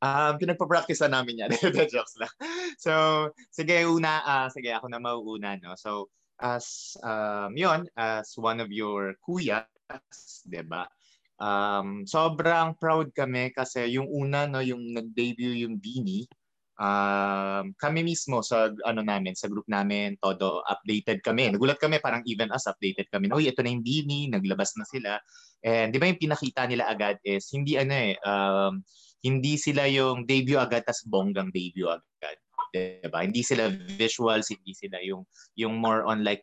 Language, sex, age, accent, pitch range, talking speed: English, male, 20-39, Filipino, 105-145 Hz, 155 wpm